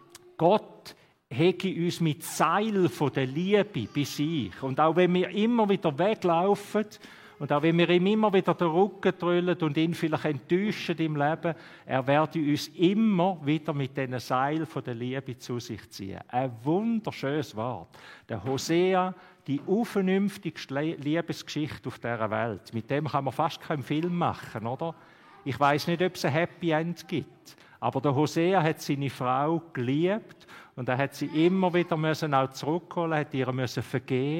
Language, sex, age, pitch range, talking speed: German, male, 50-69, 125-170 Hz, 165 wpm